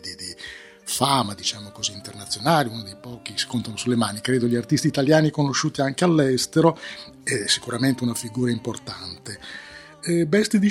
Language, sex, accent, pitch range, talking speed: Italian, male, native, 115-155 Hz, 145 wpm